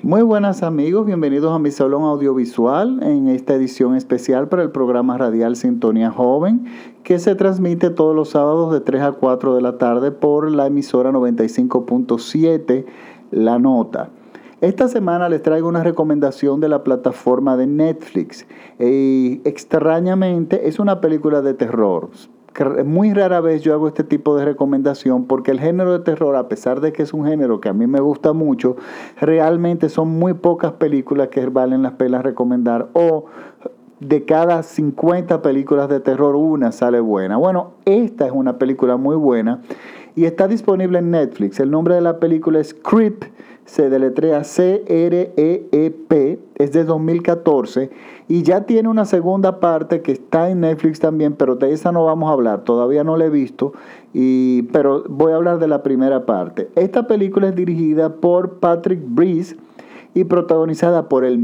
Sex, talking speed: male, 165 wpm